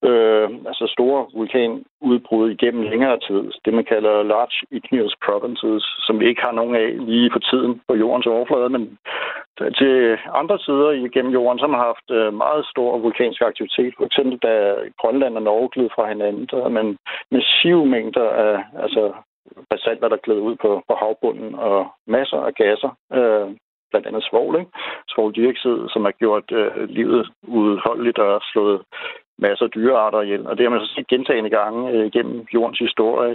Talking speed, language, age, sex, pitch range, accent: 175 wpm, Danish, 60-79, male, 110-135 Hz, native